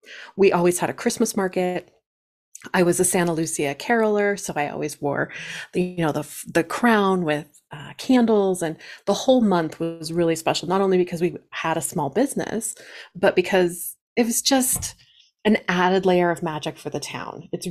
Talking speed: 185 wpm